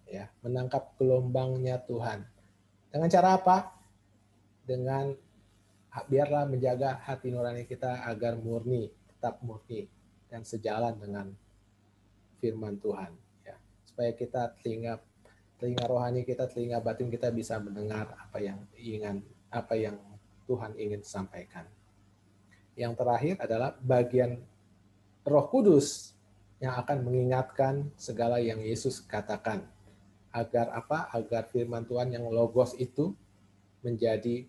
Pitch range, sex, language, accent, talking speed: 105-130 Hz, male, English, Indonesian, 110 wpm